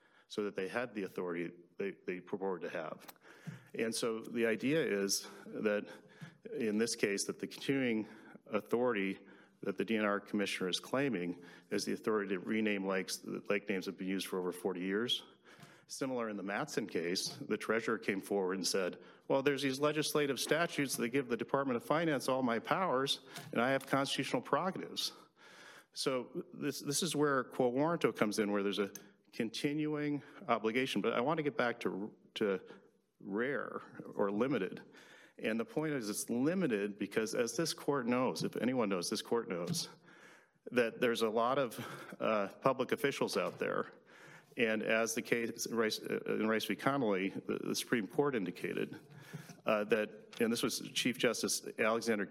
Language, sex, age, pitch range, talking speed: English, male, 40-59, 105-140 Hz, 175 wpm